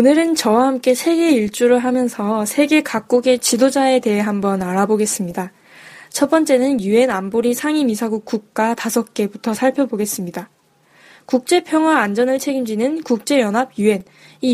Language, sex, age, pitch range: Korean, female, 10-29, 215-265 Hz